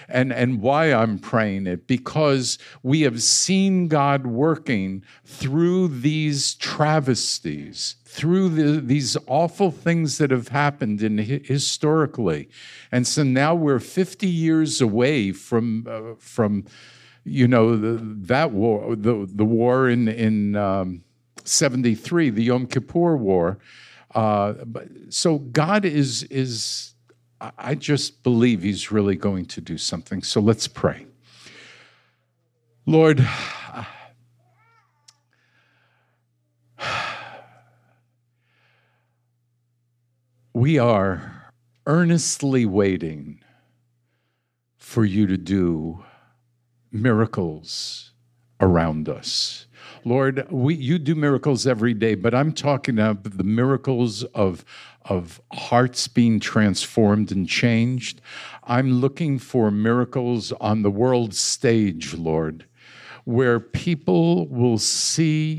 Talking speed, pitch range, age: 105 wpm, 110-140 Hz, 50-69